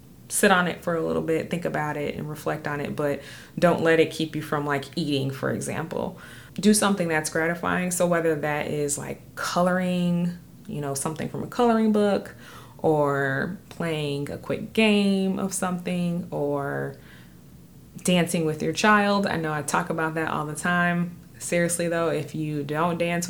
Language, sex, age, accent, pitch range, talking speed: English, female, 20-39, American, 150-180 Hz, 180 wpm